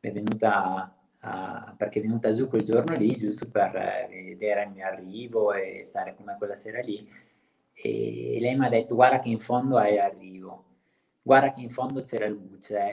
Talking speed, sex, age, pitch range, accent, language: 190 wpm, male, 20-39, 105-120 Hz, native, Italian